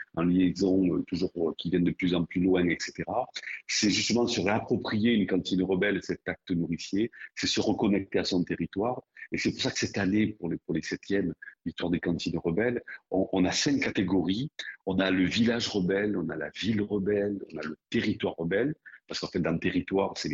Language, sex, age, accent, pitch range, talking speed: French, male, 50-69, French, 90-115 Hz, 205 wpm